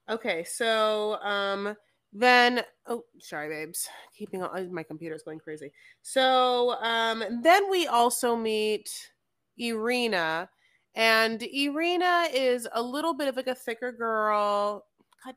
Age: 20-39